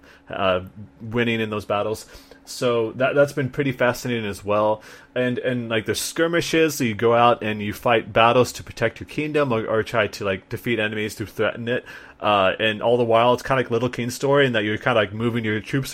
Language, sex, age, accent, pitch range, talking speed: English, male, 30-49, American, 110-130 Hz, 235 wpm